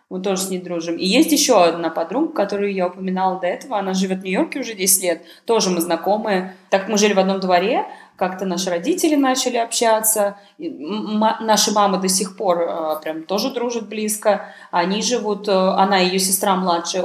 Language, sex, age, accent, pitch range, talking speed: Russian, female, 20-39, native, 185-215 Hz, 190 wpm